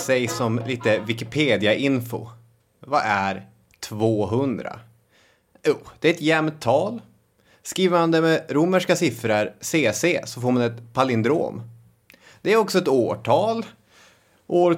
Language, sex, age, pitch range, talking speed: English, male, 30-49, 115-165 Hz, 120 wpm